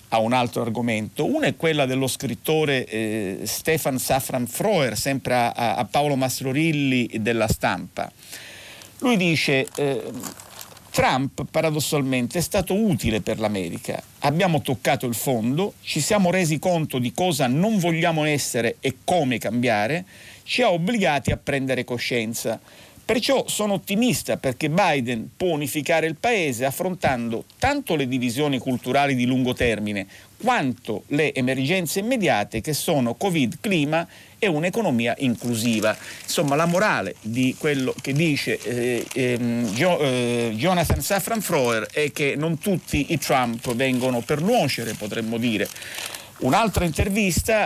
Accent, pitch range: native, 120-160 Hz